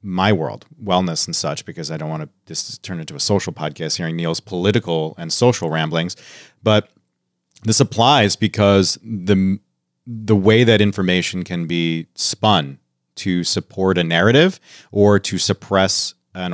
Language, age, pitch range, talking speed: English, 30-49, 90-110 Hz, 155 wpm